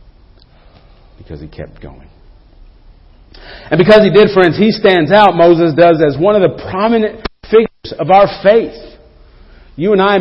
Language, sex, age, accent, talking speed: English, male, 40-59, American, 155 wpm